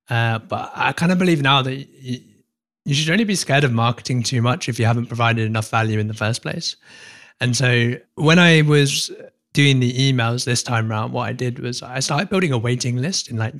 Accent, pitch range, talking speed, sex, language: British, 115-140 Hz, 225 wpm, male, English